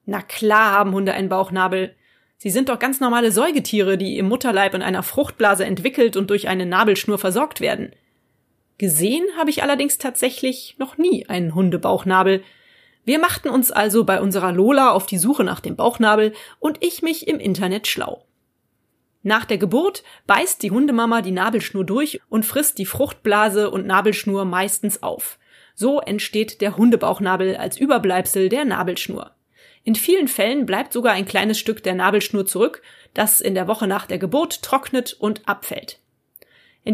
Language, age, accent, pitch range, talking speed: German, 30-49, German, 200-260 Hz, 160 wpm